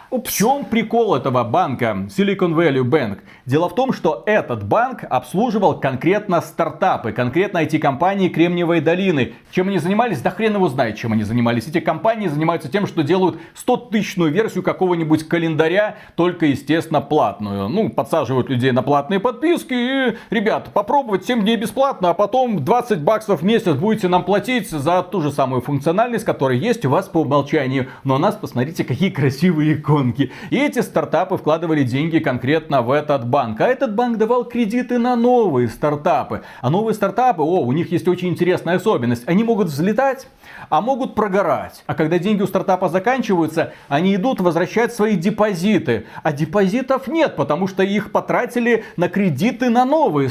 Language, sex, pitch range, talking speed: Russian, male, 150-220 Hz, 165 wpm